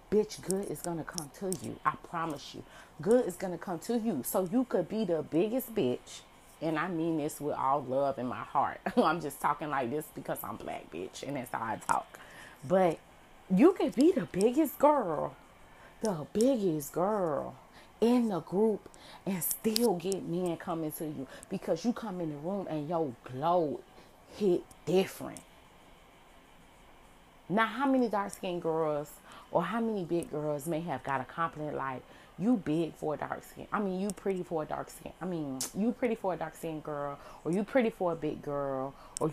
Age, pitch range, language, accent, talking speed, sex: 30-49, 155-200 Hz, English, American, 195 wpm, female